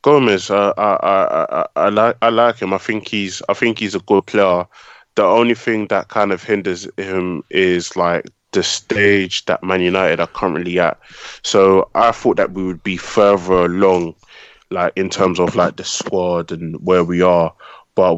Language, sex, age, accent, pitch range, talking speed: English, male, 20-39, British, 90-105 Hz, 190 wpm